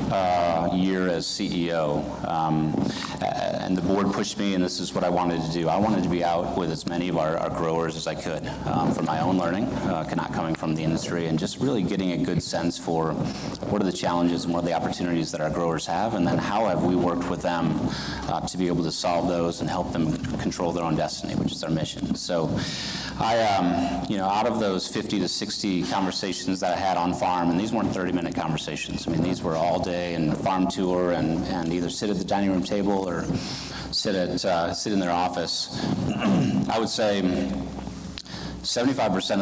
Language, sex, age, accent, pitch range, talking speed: English, male, 30-49, American, 80-90 Hz, 220 wpm